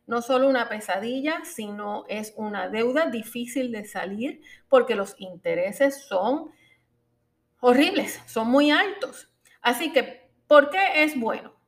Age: 40-59